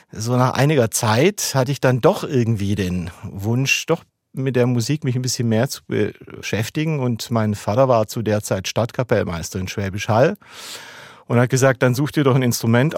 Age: 40-59